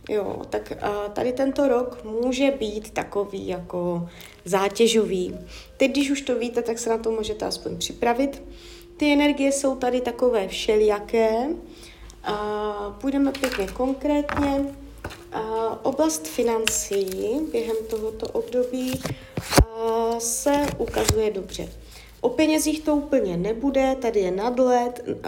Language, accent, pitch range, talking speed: Czech, native, 210-265 Hz, 110 wpm